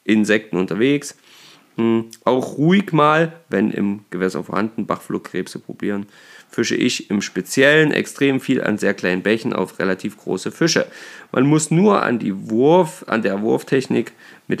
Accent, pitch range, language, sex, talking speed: German, 105-135 Hz, German, male, 145 wpm